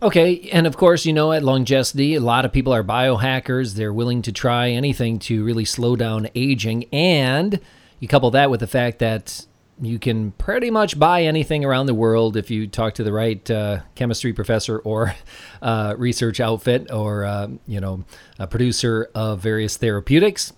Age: 40-59